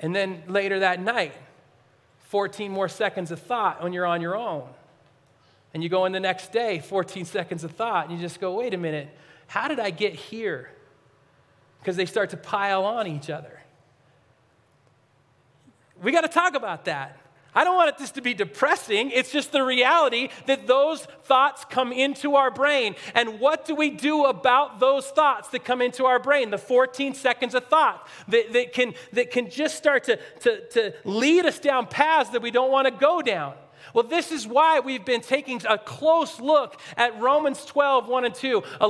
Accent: American